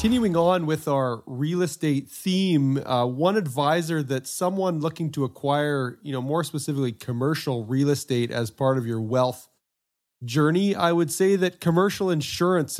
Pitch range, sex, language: 140-180 Hz, male, English